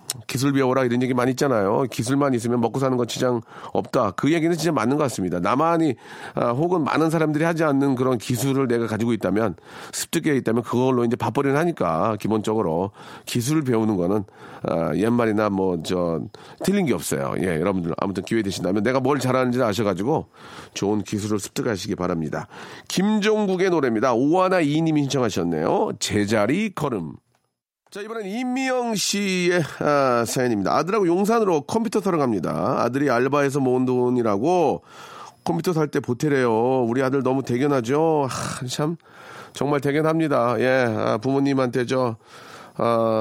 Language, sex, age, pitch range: Korean, male, 40-59, 115-150 Hz